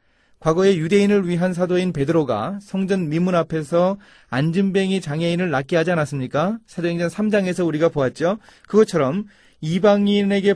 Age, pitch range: 30-49, 125-190 Hz